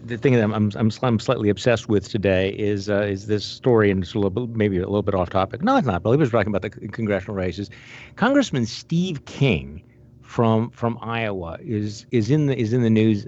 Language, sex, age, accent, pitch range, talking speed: English, male, 50-69, American, 105-125 Hz, 220 wpm